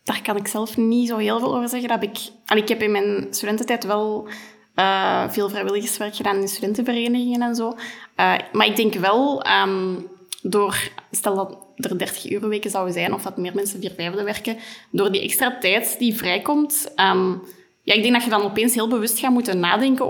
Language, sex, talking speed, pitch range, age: Dutch, female, 200 wpm, 190-225 Hz, 20-39